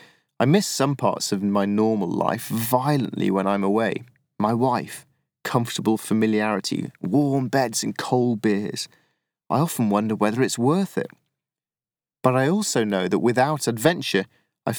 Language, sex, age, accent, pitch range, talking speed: English, male, 30-49, British, 110-145 Hz, 145 wpm